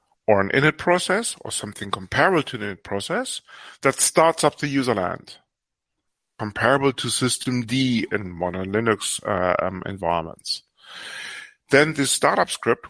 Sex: male